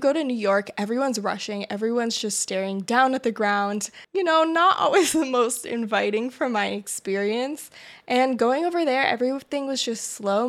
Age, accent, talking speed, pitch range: 20-39, American, 175 wpm, 205-245 Hz